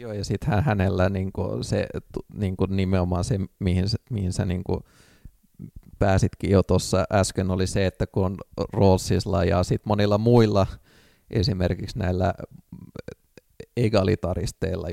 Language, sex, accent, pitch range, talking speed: Finnish, male, native, 90-100 Hz, 115 wpm